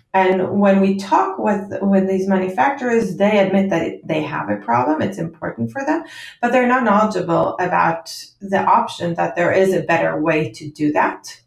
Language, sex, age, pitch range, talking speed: English, female, 30-49, 165-210 Hz, 185 wpm